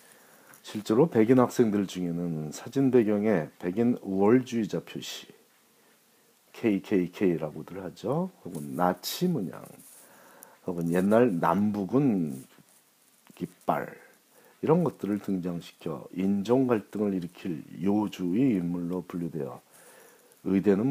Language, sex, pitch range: Korean, male, 85-120 Hz